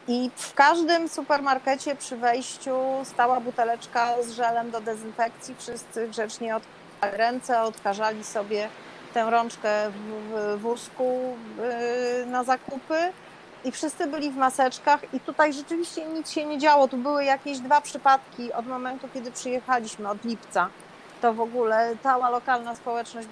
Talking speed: 135 wpm